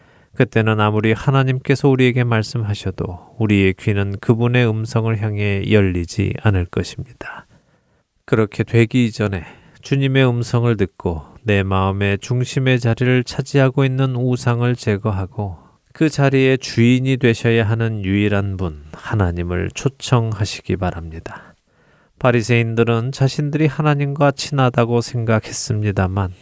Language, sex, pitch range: Korean, male, 100-125 Hz